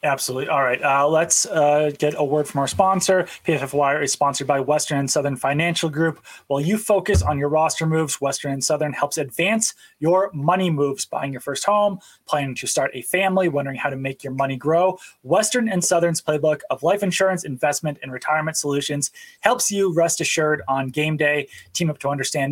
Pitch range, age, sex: 150-190 Hz, 20-39, male